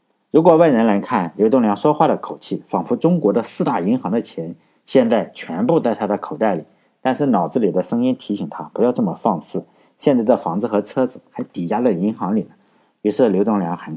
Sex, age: male, 50-69